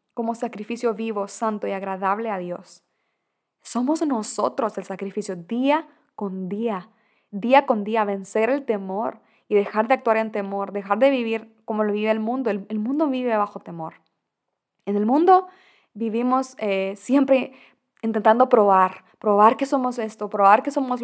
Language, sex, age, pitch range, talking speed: Spanish, female, 20-39, 205-250 Hz, 160 wpm